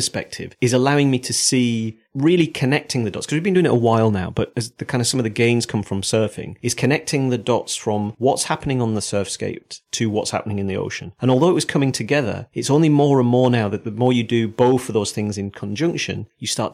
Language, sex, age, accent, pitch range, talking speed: English, male, 40-59, British, 105-125 Hz, 255 wpm